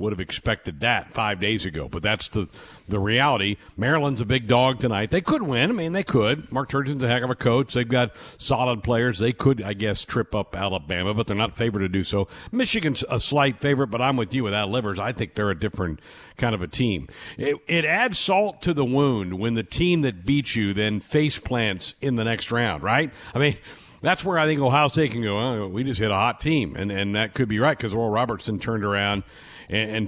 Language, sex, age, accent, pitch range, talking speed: English, male, 60-79, American, 105-145 Hz, 235 wpm